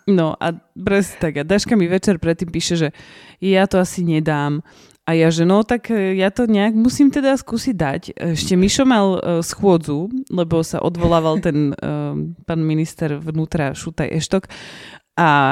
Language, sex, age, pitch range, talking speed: Slovak, female, 20-39, 155-185 Hz, 165 wpm